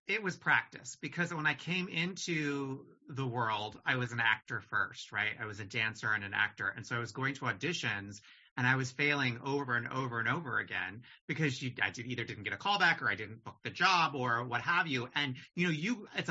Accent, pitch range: American, 125-160 Hz